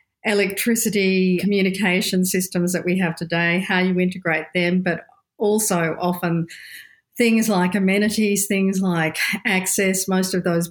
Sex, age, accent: female, 50-69, Australian